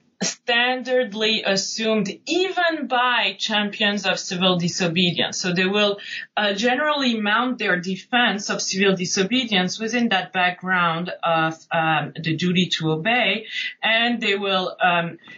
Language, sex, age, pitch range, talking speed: English, female, 30-49, 165-220 Hz, 125 wpm